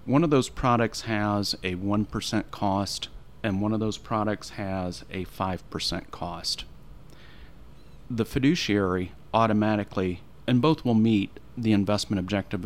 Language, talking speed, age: English, 130 wpm, 40-59